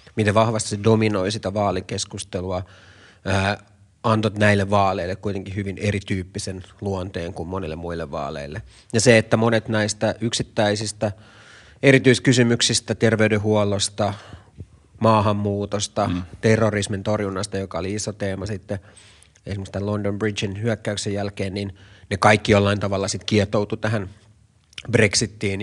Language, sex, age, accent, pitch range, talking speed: Finnish, male, 30-49, native, 100-110 Hz, 110 wpm